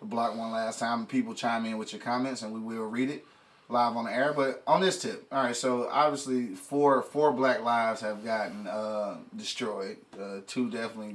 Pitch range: 110-135 Hz